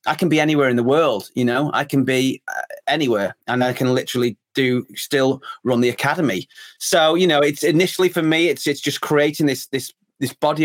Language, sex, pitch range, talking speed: English, male, 125-155 Hz, 215 wpm